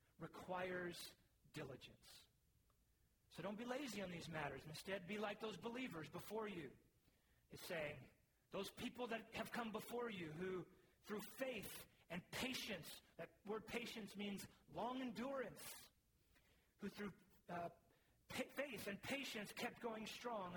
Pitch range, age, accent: 170-225 Hz, 40-59, American